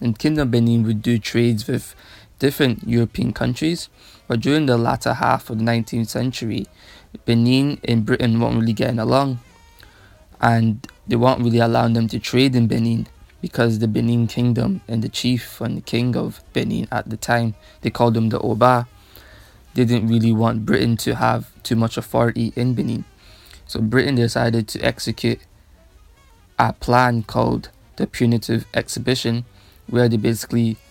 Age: 20-39